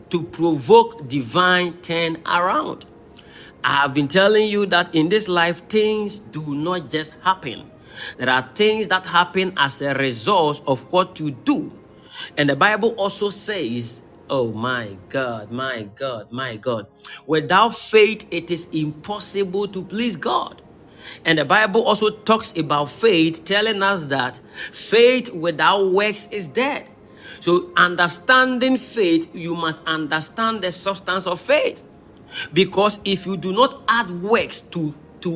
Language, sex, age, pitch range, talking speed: English, male, 40-59, 160-215 Hz, 145 wpm